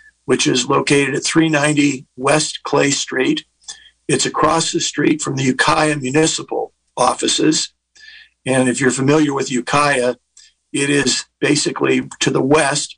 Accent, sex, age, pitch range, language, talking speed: American, male, 50-69, 135-180 Hz, English, 135 wpm